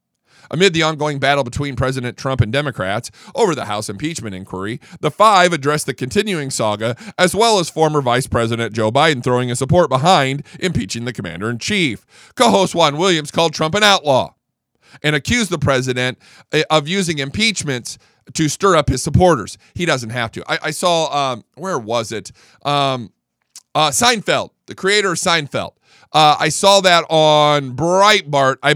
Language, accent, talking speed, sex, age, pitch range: English, American, 165 wpm, male, 40-59, 130-175 Hz